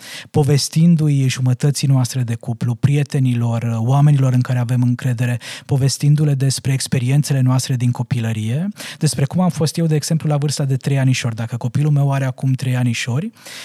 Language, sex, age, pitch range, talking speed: Romanian, male, 20-39, 130-155 Hz, 160 wpm